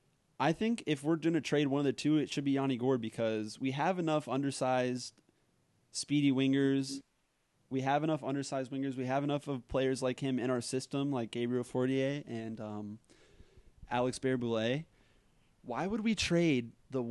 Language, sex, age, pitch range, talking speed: English, male, 20-39, 120-135 Hz, 175 wpm